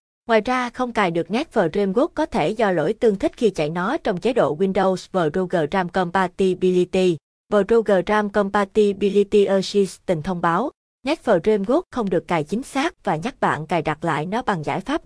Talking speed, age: 175 wpm, 20-39